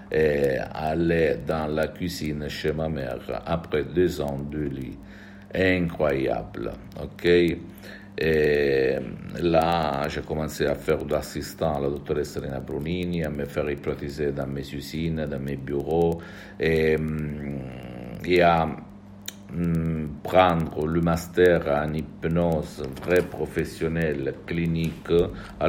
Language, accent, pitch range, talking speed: Italian, native, 75-90 Hz, 120 wpm